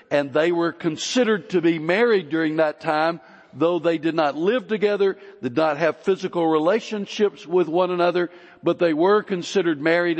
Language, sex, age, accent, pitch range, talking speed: English, male, 60-79, American, 145-185 Hz, 170 wpm